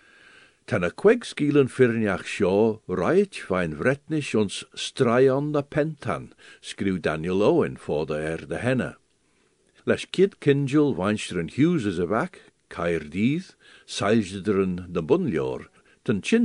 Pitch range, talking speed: 100-160 Hz, 130 wpm